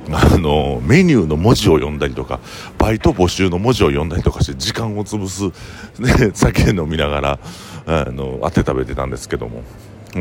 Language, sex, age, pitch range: Japanese, male, 50-69, 80-110 Hz